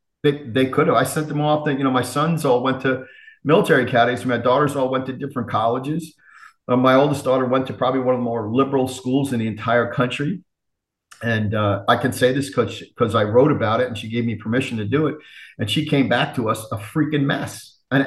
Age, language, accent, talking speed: 40-59, English, American, 235 wpm